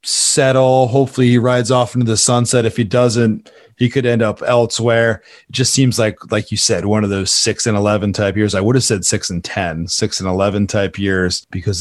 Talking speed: 225 wpm